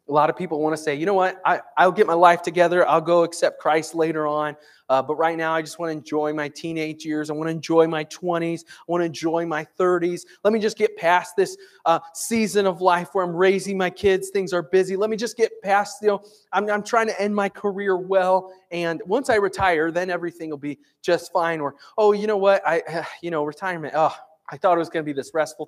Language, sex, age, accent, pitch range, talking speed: English, male, 20-39, American, 155-190 Hz, 255 wpm